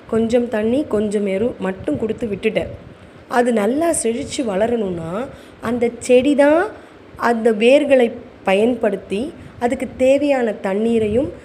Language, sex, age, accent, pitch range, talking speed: Tamil, female, 20-39, native, 185-240 Hz, 100 wpm